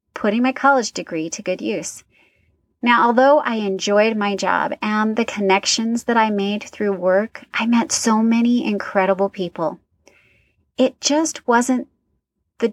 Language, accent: English, American